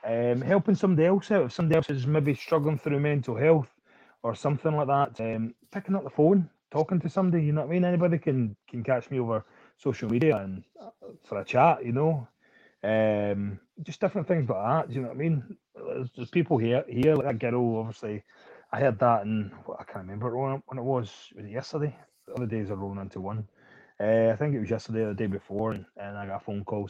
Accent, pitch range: British, 110-150 Hz